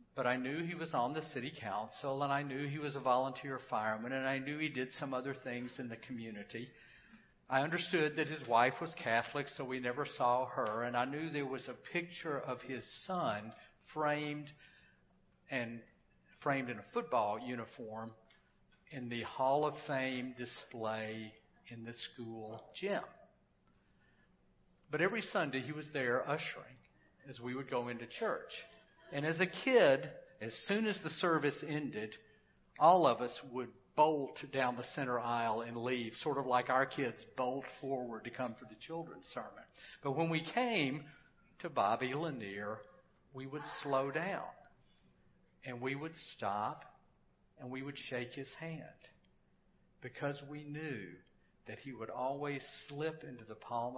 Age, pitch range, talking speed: 50-69, 120-150 Hz, 160 wpm